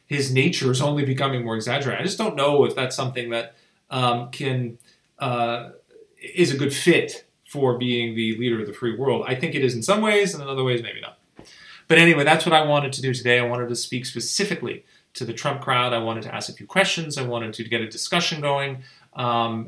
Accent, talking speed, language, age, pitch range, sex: American, 230 wpm, English, 30-49, 115-140 Hz, male